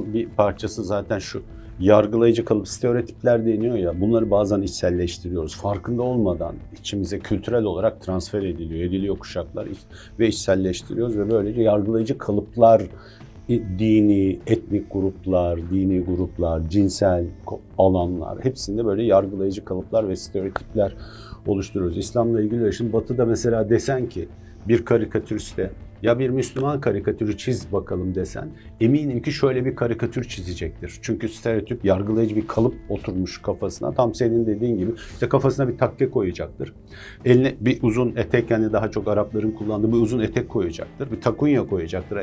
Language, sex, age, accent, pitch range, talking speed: Turkish, male, 50-69, native, 95-120 Hz, 135 wpm